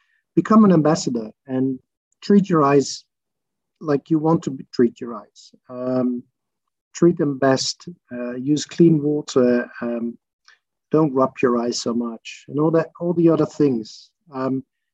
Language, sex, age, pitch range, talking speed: English, male, 50-69, 135-175 Hz, 150 wpm